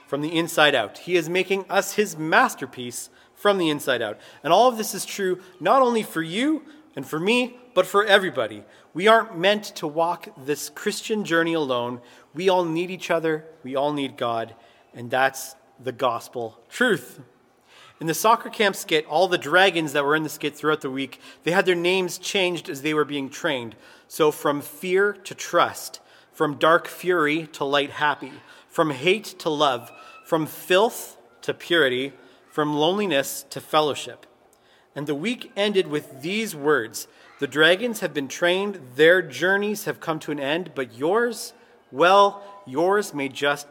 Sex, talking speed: male, 175 wpm